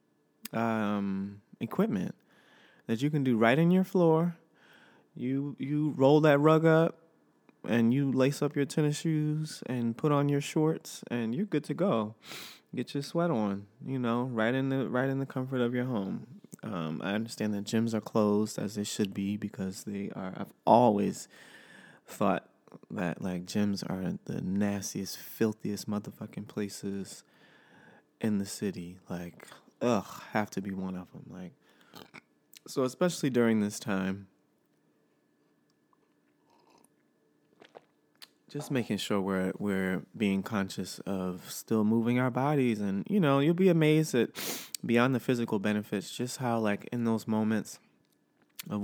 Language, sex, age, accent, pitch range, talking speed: English, male, 20-39, American, 100-135 Hz, 150 wpm